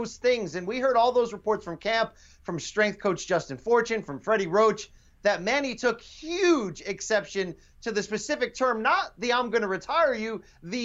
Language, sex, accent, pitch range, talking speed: English, male, American, 195-230 Hz, 190 wpm